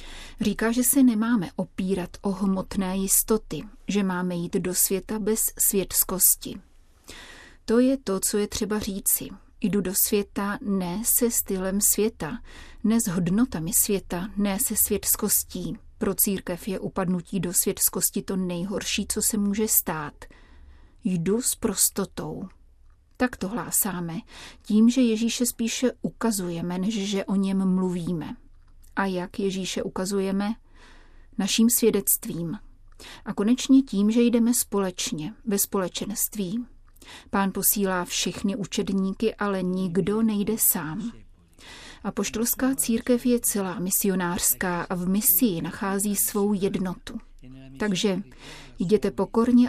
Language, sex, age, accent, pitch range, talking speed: Czech, female, 30-49, native, 185-220 Hz, 120 wpm